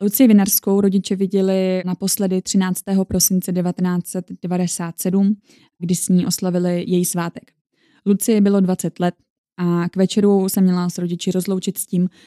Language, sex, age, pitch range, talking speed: Czech, female, 20-39, 180-200 Hz, 135 wpm